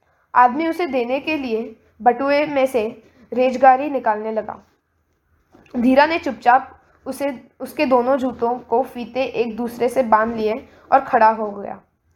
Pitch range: 230-285 Hz